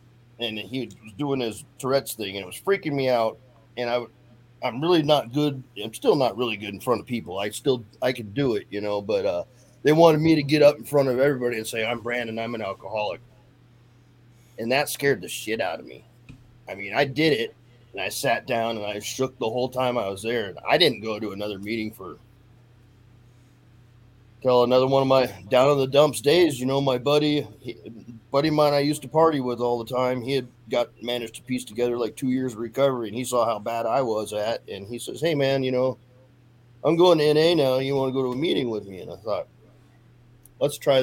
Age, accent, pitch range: 30-49, American, 115-135 Hz